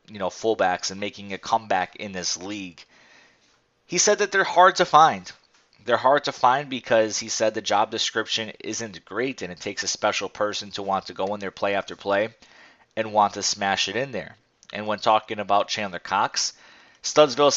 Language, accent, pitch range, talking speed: English, American, 100-120 Hz, 200 wpm